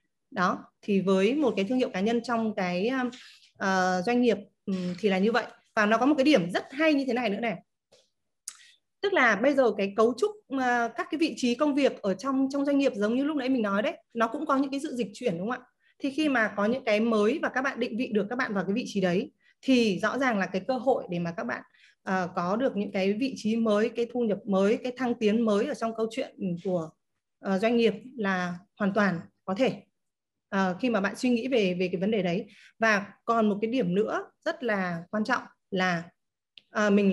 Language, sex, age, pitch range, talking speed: Vietnamese, female, 20-39, 195-255 Hz, 240 wpm